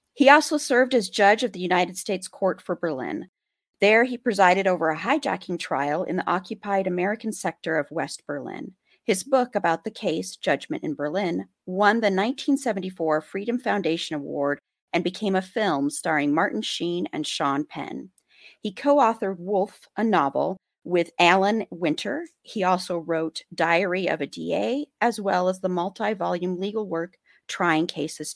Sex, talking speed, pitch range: female, 160 wpm, 170-215 Hz